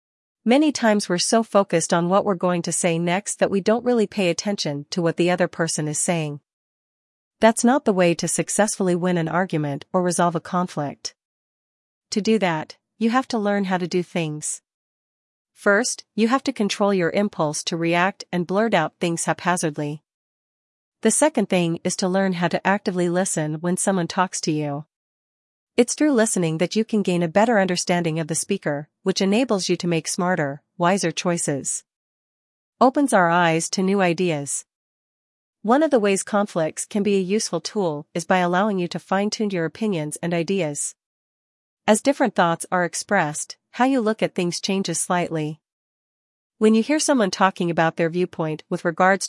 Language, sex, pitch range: English, female, 165-205 Hz